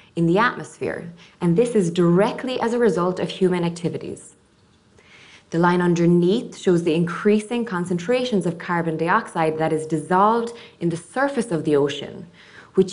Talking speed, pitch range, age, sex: 155 wpm, 165-205 Hz, 20-39, female